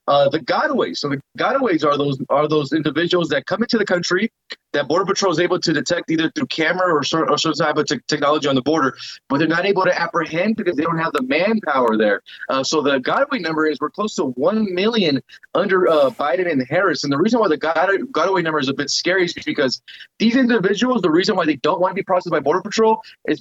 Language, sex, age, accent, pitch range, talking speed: English, male, 30-49, American, 155-195 Hz, 240 wpm